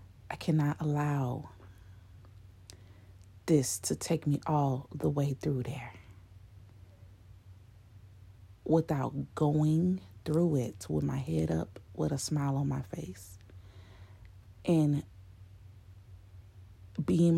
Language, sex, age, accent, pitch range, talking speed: English, female, 30-49, American, 95-155 Hz, 95 wpm